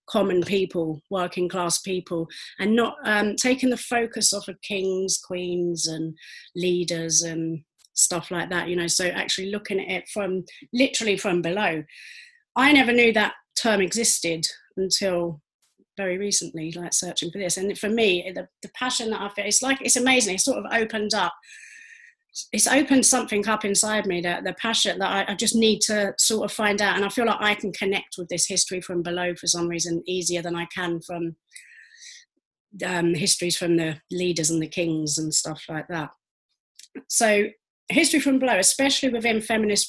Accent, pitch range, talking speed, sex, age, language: British, 175-225 Hz, 180 wpm, female, 30-49, English